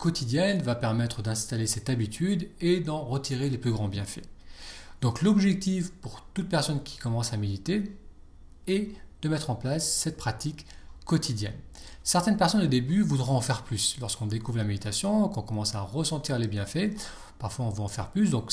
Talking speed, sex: 180 wpm, male